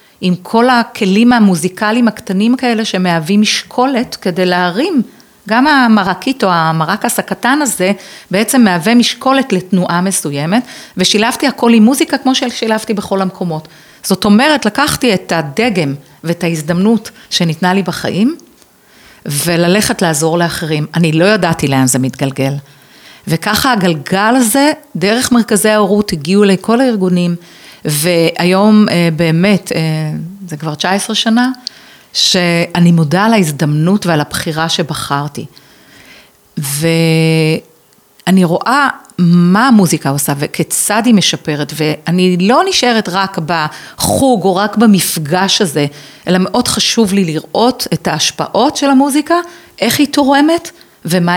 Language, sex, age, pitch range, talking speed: Hebrew, female, 40-59, 165-230 Hz, 115 wpm